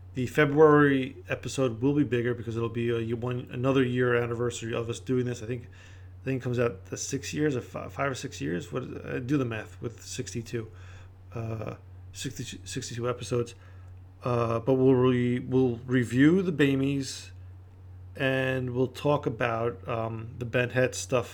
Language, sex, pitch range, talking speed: English, male, 105-130 Hz, 175 wpm